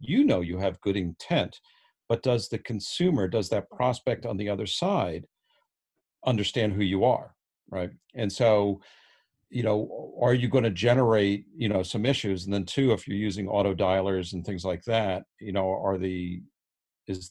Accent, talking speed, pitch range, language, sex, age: American, 180 wpm, 95-120 Hz, English, male, 50-69